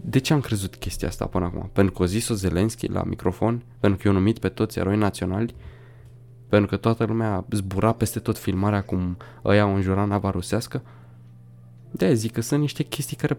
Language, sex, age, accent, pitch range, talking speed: Romanian, male, 20-39, native, 105-125 Hz, 195 wpm